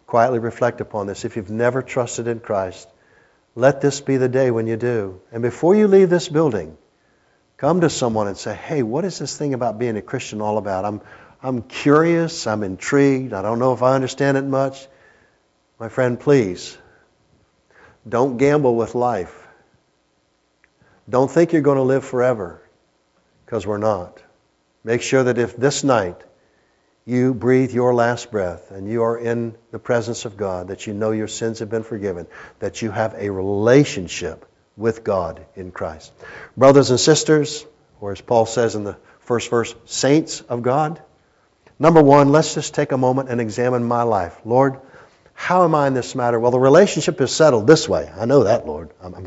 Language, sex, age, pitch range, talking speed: English, male, 60-79, 110-140 Hz, 180 wpm